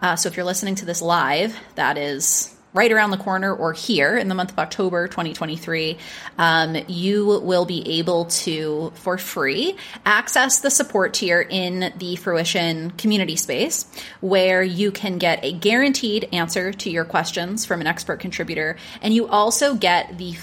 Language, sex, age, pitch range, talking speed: English, female, 30-49, 170-220 Hz, 170 wpm